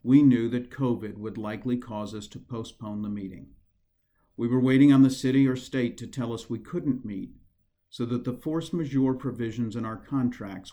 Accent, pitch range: American, 100-130 Hz